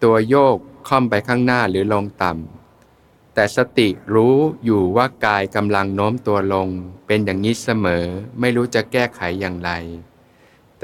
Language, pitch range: Thai, 95-125 Hz